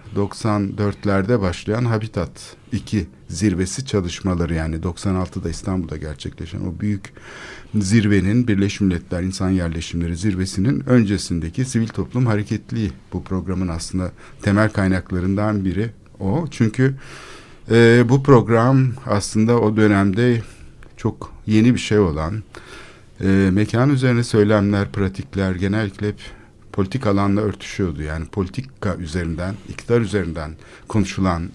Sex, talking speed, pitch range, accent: male, 105 wpm, 95-120 Hz, native